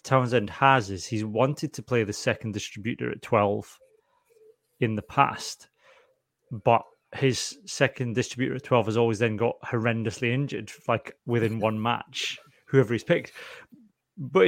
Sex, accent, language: male, British, English